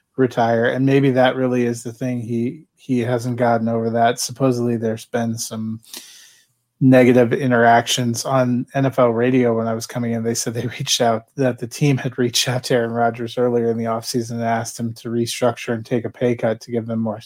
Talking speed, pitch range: 210 wpm, 115-130 Hz